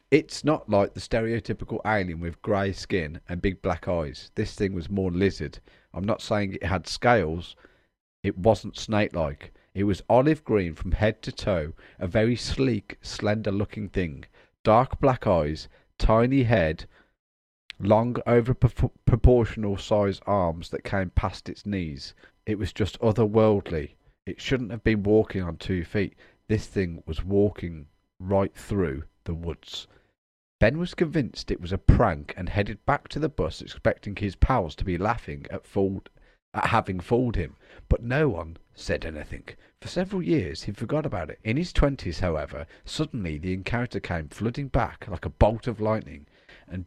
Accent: British